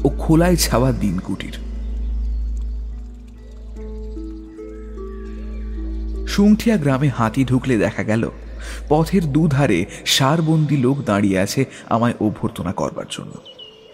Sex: male